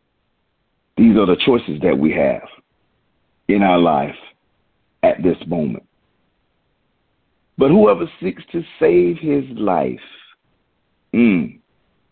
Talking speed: 105 wpm